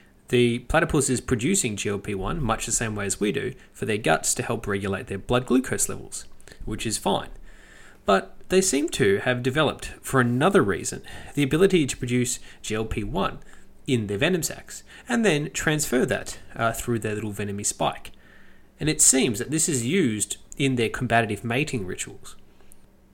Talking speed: 170 wpm